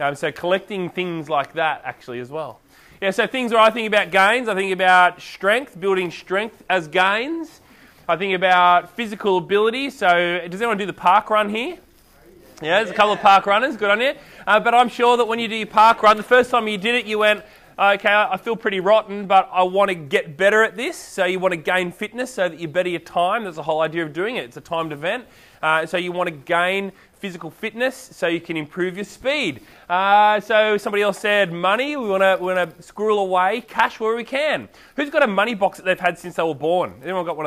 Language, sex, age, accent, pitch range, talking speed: English, male, 20-39, Australian, 170-210 Hz, 240 wpm